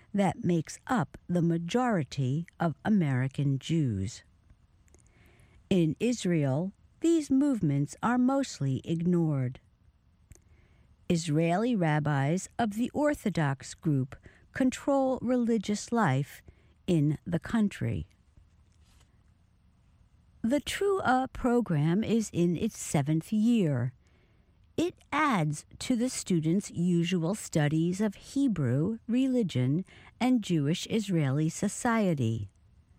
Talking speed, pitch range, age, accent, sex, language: 85 wpm, 135-220 Hz, 60-79, American, female, English